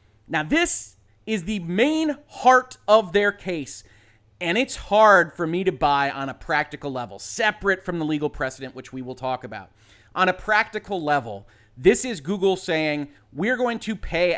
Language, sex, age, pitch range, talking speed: English, male, 30-49, 135-200 Hz, 175 wpm